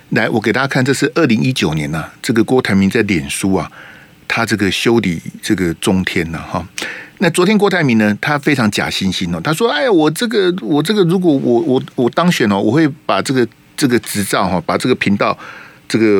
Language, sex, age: Chinese, male, 50-69